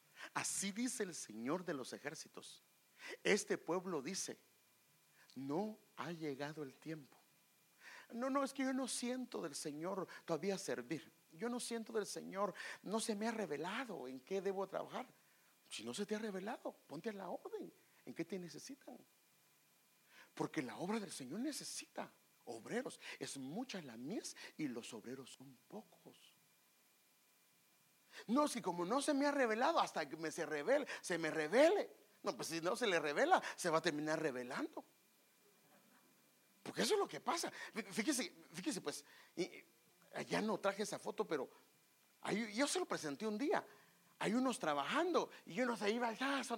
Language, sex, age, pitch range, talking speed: English, male, 50-69, 160-255 Hz, 170 wpm